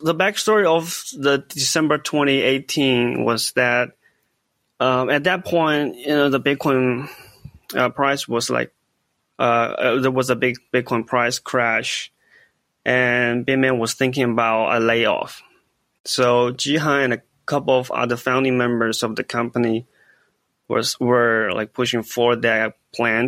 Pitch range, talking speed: 120-140 Hz, 140 wpm